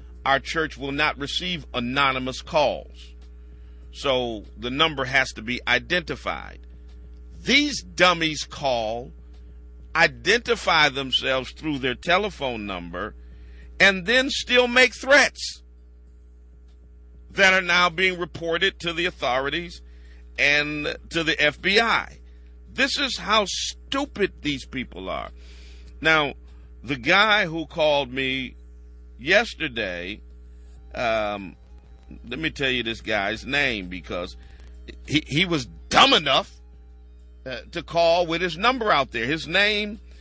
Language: English